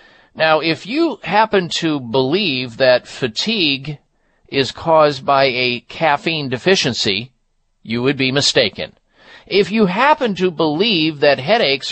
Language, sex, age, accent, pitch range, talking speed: English, male, 50-69, American, 125-190 Hz, 125 wpm